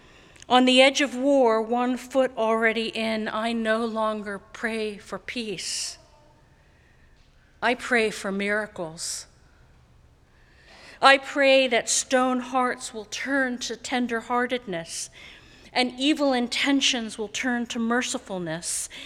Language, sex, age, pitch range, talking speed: English, female, 50-69, 205-255 Hz, 110 wpm